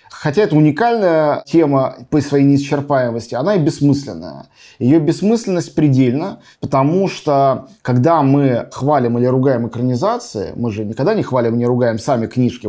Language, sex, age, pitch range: Russian, male, 20-39, 125-160 Hz